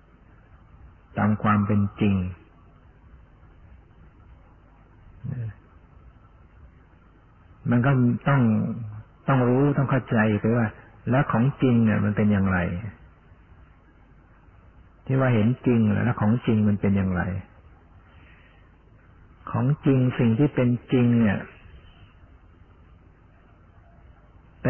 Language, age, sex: Thai, 60-79, male